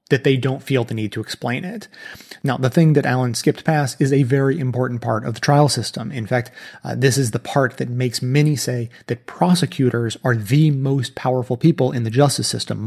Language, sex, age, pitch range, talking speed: English, male, 30-49, 120-150 Hz, 220 wpm